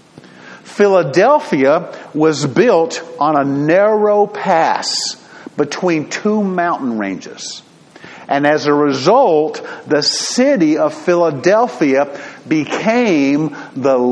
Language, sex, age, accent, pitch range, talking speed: English, male, 50-69, American, 140-205 Hz, 90 wpm